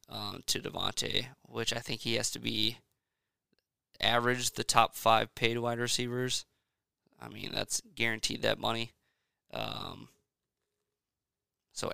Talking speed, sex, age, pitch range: 125 wpm, male, 20-39, 115-130 Hz